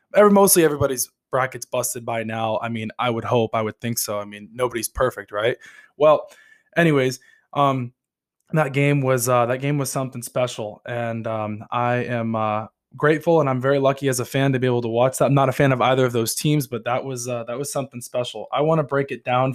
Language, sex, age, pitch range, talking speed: English, male, 20-39, 120-140 Hz, 230 wpm